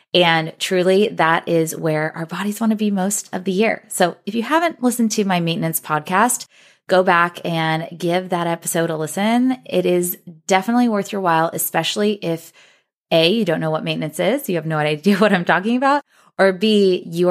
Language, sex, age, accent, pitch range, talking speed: English, female, 20-39, American, 165-210 Hz, 200 wpm